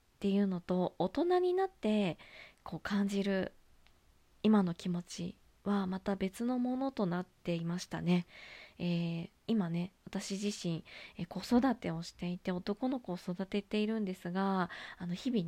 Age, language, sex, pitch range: 20-39, Japanese, female, 185-250 Hz